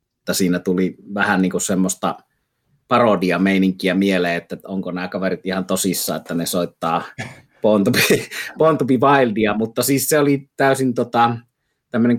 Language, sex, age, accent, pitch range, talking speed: Finnish, male, 30-49, native, 95-110 Hz, 160 wpm